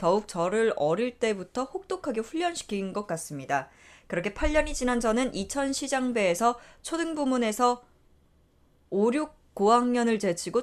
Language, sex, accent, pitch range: Korean, female, native, 180-265 Hz